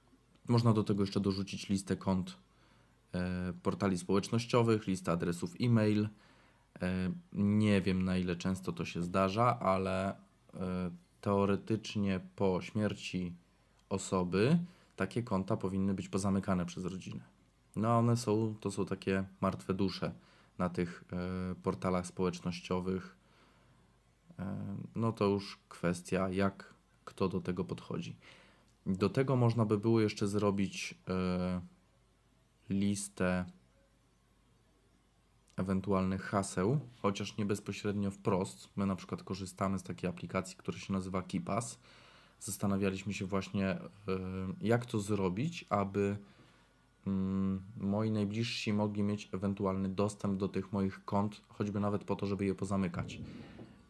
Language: Polish